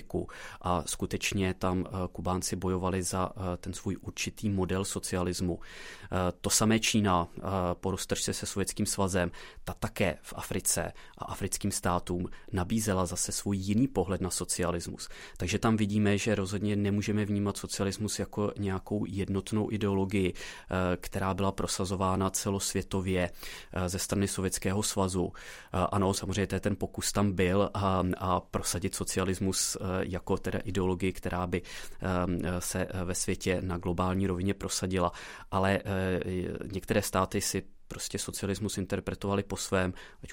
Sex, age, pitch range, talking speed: male, 20-39, 90-100 Hz, 125 wpm